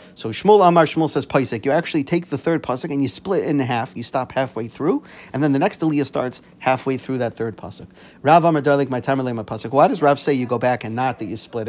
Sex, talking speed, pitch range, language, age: male, 230 wpm, 125-155 Hz, English, 40-59